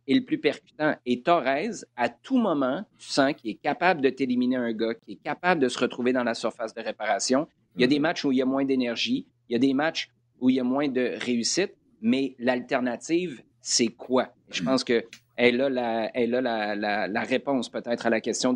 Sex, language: male, French